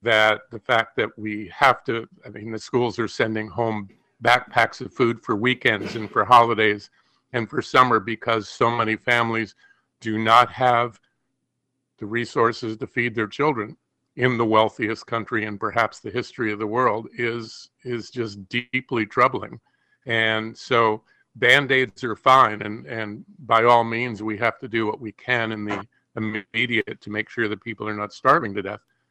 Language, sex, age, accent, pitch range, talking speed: English, male, 50-69, American, 110-120 Hz, 175 wpm